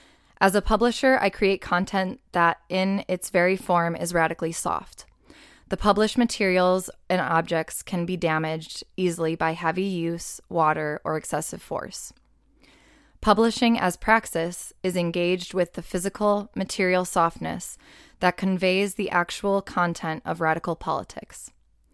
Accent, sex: American, female